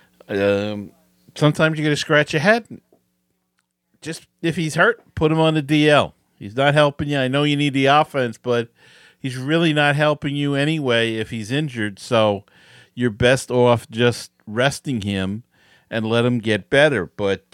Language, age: English, 50-69